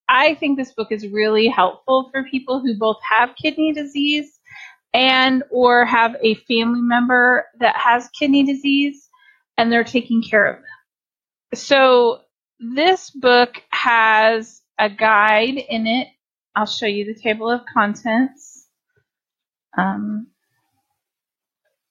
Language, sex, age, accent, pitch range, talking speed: English, female, 30-49, American, 220-270 Hz, 125 wpm